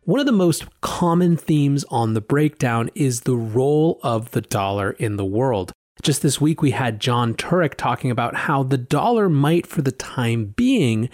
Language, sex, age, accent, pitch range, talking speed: English, male, 30-49, American, 115-160 Hz, 190 wpm